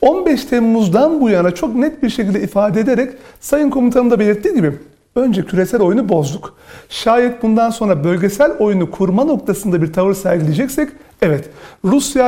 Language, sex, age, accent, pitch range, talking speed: Turkish, male, 40-59, native, 195-245 Hz, 150 wpm